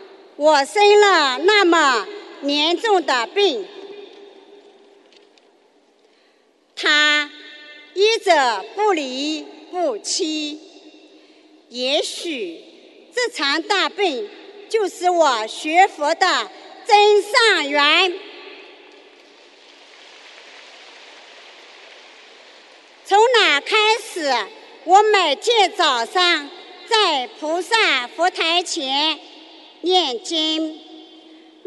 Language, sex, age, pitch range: Chinese, male, 50-69, 335-405 Hz